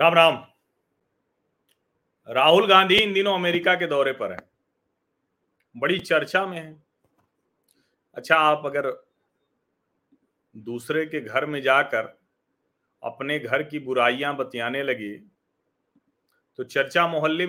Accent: native